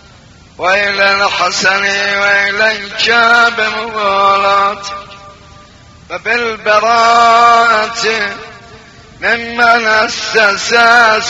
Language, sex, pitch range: Persian, male, 200-225 Hz